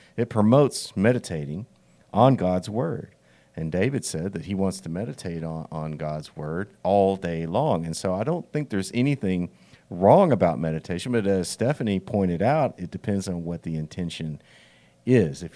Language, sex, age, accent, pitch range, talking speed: English, male, 50-69, American, 85-110 Hz, 170 wpm